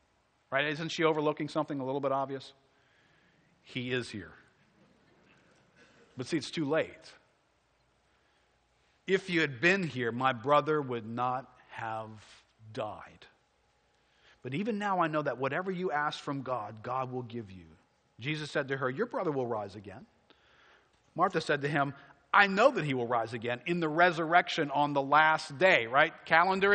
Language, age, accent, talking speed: English, 50-69, American, 160 wpm